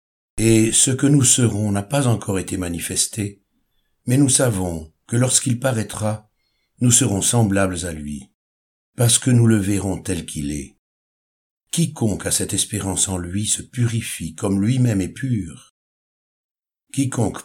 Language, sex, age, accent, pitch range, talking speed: French, male, 60-79, French, 85-120 Hz, 145 wpm